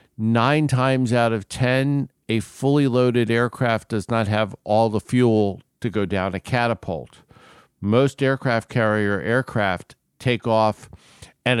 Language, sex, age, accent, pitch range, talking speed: English, male, 50-69, American, 100-125 Hz, 140 wpm